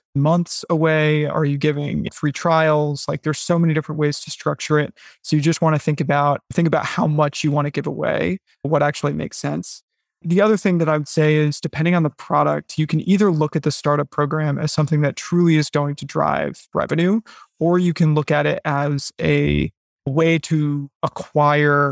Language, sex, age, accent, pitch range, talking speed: English, male, 20-39, American, 145-165 Hz, 210 wpm